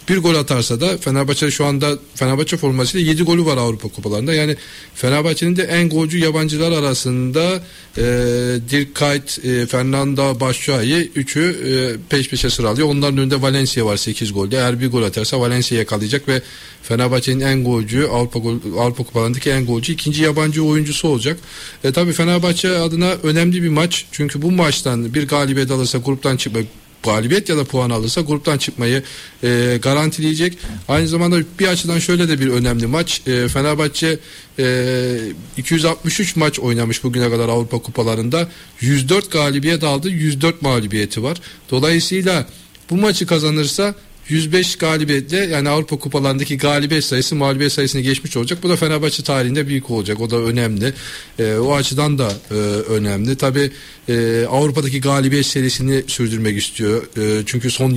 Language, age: Turkish, 40-59